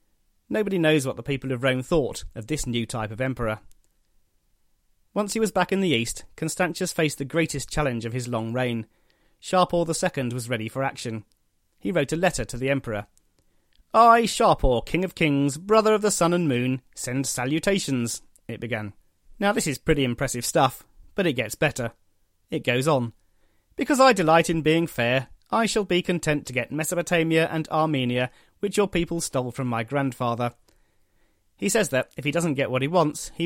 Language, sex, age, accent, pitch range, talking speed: English, male, 30-49, British, 120-170 Hz, 185 wpm